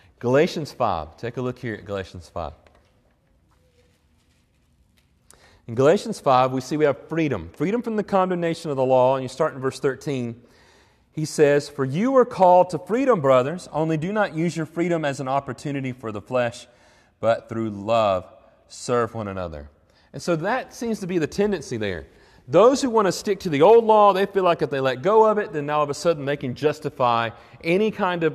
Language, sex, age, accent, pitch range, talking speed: English, male, 30-49, American, 100-150 Hz, 205 wpm